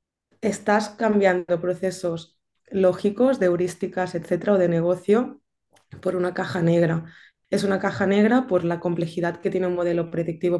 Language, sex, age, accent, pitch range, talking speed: Spanish, female, 20-39, Spanish, 170-190 Hz, 145 wpm